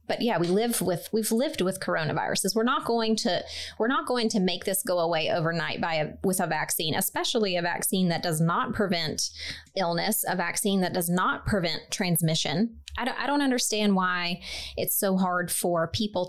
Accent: American